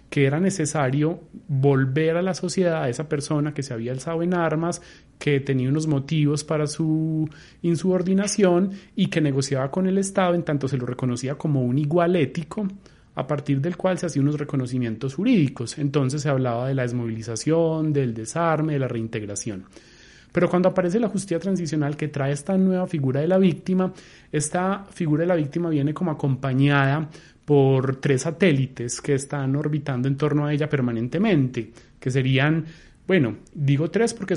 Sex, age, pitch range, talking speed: male, 30-49, 135-180 Hz, 170 wpm